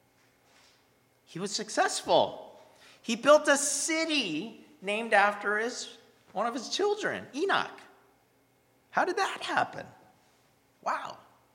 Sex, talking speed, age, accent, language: male, 100 wpm, 40-59, American, English